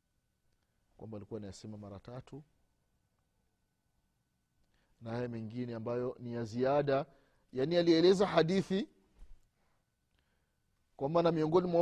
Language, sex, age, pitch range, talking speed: Swahili, male, 30-49, 135-210 Hz, 110 wpm